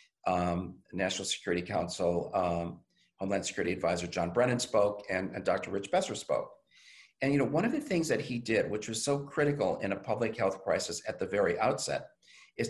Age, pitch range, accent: 50-69, 100-125 Hz, American